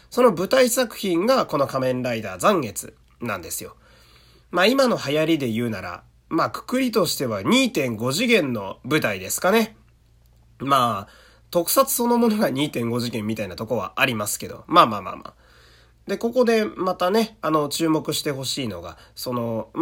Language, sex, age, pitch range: Japanese, male, 30-49, 120-200 Hz